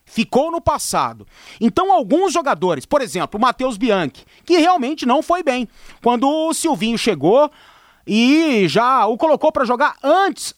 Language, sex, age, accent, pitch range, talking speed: Portuguese, male, 30-49, Brazilian, 205-275 Hz, 155 wpm